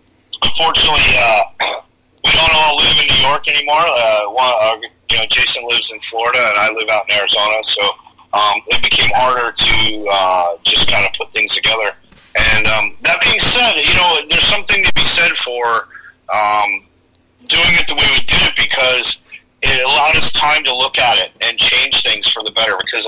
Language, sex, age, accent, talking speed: English, male, 40-59, American, 195 wpm